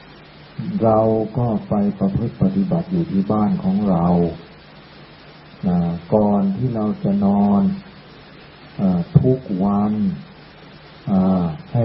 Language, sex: Thai, male